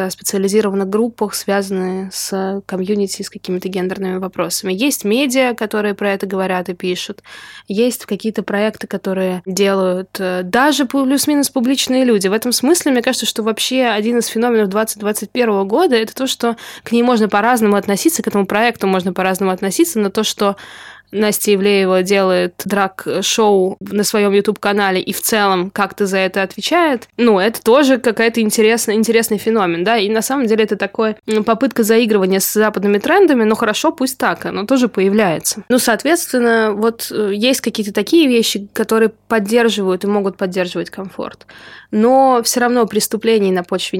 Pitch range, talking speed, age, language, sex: 195-230 Hz, 155 wpm, 20-39, Russian, female